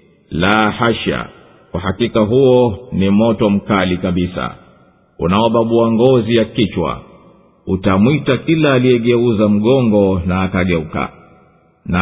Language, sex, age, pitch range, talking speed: English, male, 50-69, 100-125 Hz, 95 wpm